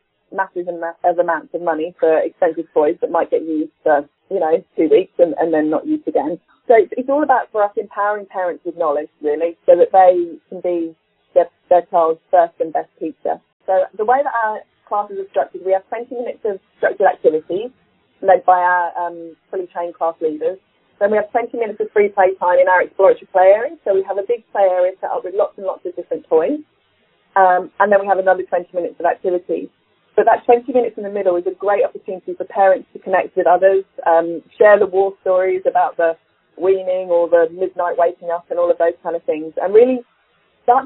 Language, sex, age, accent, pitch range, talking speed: English, female, 20-39, British, 175-215 Hz, 220 wpm